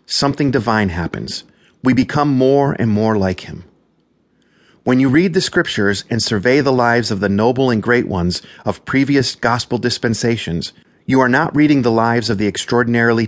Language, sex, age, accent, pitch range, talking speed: English, male, 40-59, American, 110-135 Hz, 170 wpm